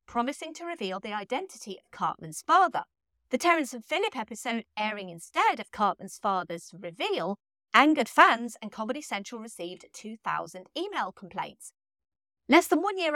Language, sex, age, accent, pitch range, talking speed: English, female, 30-49, British, 205-315 Hz, 145 wpm